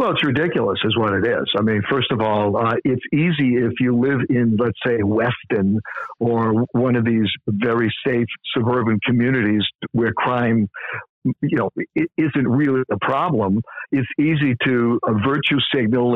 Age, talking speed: 60-79, 165 wpm